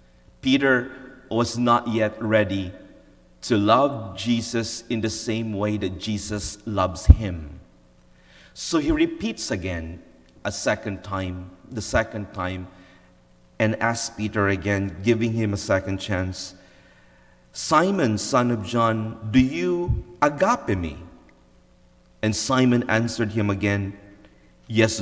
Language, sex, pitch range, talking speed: English, male, 90-120 Hz, 120 wpm